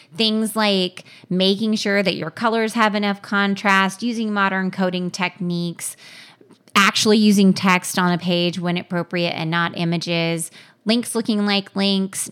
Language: English